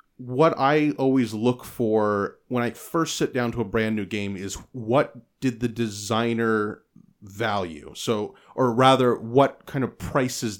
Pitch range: 105-130 Hz